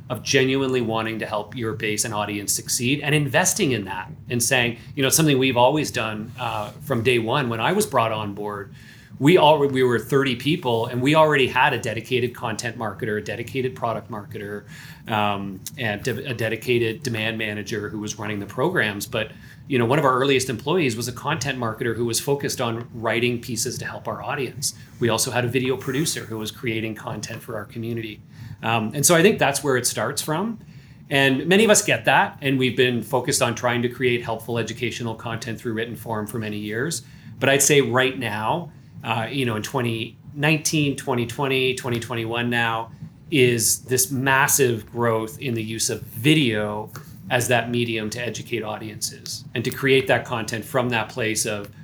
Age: 40-59